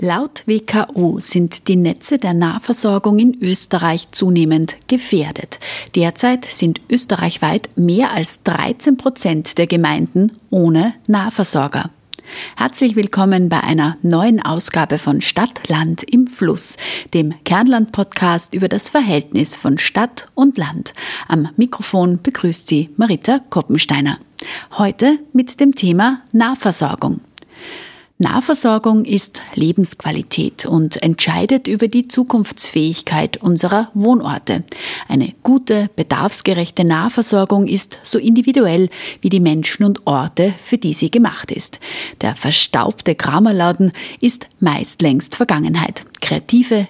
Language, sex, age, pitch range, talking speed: German, female, 30-49, 170-235 Hz, 115 wpm